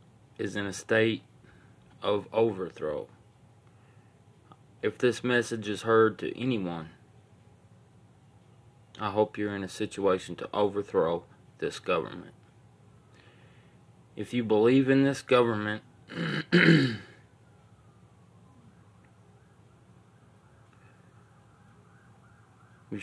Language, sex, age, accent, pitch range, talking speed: English, male, 20-39, American, 100-120 Hz, 80 wpm